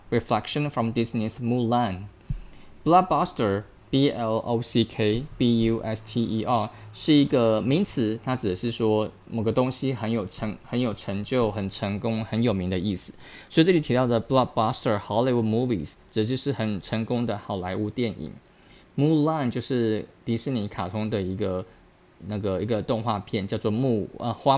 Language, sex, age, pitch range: Chinese, male, 20-39, 100-125 Hz